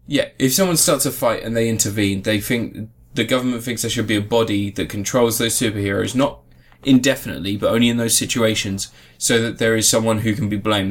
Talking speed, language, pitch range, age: 215 wpm, English, 100-125 Hz, 10-29